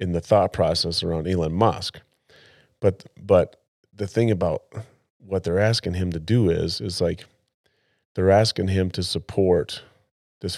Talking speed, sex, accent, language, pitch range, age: 155 wpm, male, American, English, 85-105 Hz, 30-49